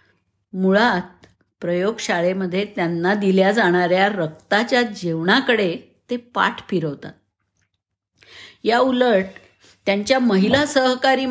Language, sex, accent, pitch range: Marathi, female, native, 175-235 Hz